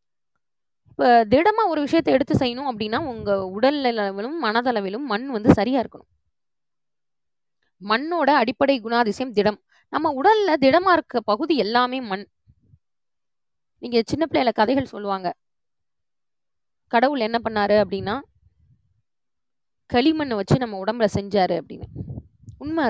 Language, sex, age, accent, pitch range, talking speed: Tamil, female, 20-39, native, 205-290 Hz, 110 wpm